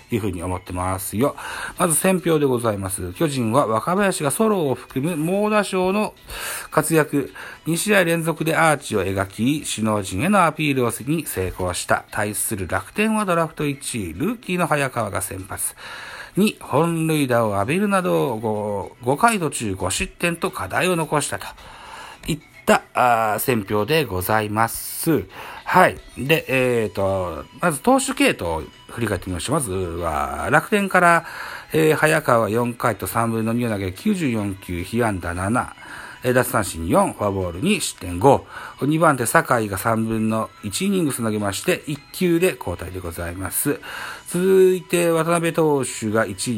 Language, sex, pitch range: Japanese, male, 100-165 Hz